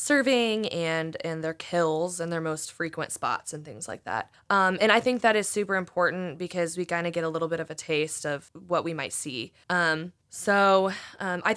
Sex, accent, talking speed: female, American, 220 wpm